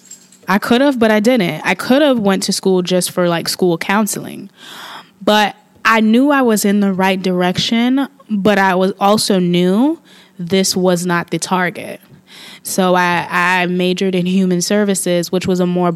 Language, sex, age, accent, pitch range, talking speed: English, female, 20-39, American, 175-195 Hz, 175 wpm